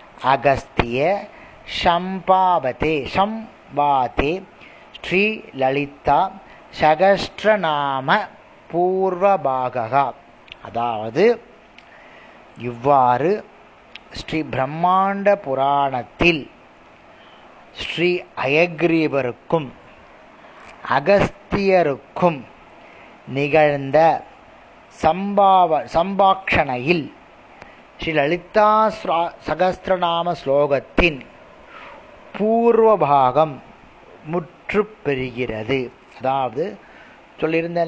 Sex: male